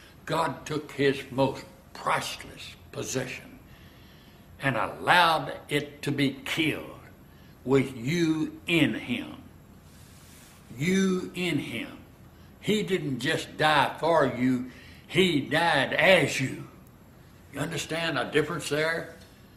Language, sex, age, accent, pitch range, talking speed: English, male, 60-79, American, 130-160 Hz, 105 wpm